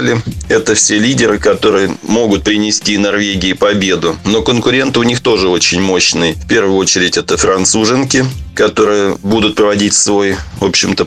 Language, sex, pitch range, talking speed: Russian, male, 100-115 Hz, 140 wpm